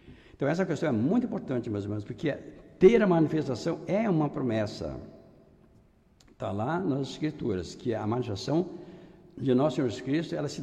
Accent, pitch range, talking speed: Brazilian, 110-160 Hz, 165 wpm